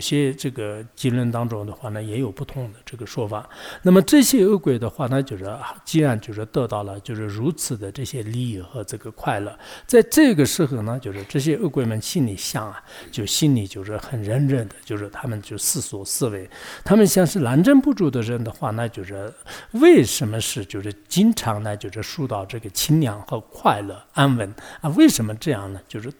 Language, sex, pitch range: English, male, 110-150 Hz